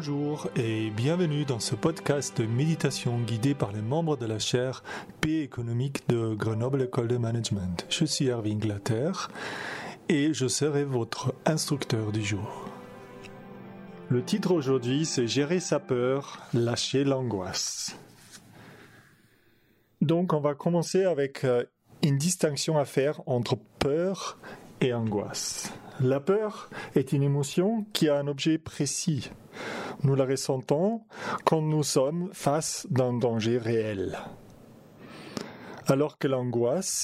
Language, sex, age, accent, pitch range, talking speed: French, male, 30-49, French, 120-160 Hz, 130 wpm